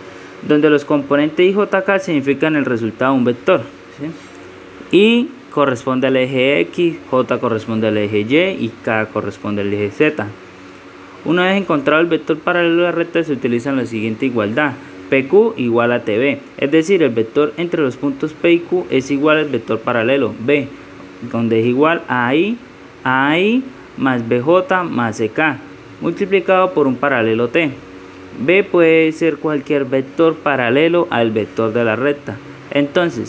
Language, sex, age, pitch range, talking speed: Spanish, male, 20-39, 110-155 Hz, 160 wpm